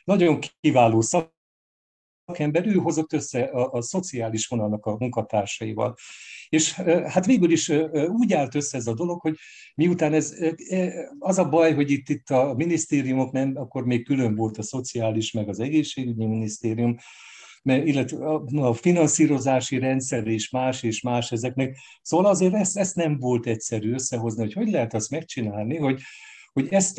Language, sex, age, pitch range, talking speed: Hungarian, male, 60-79, 115-155 Hz, 155 wpm